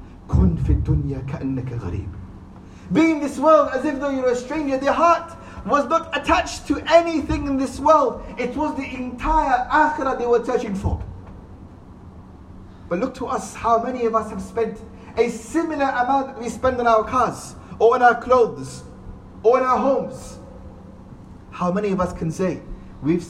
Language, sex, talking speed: English, male, 160 wpm